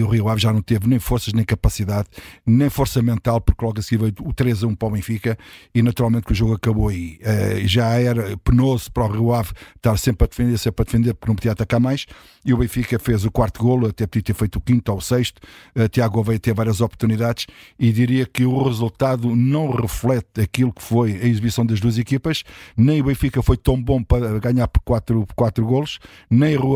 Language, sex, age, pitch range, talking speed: Portuguese, male, 50-69, 110-125 Hz, 230 wpm